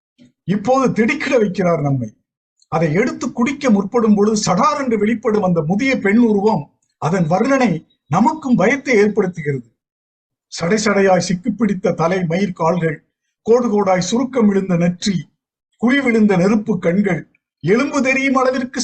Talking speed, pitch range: 125 wpm, 170-235 Hz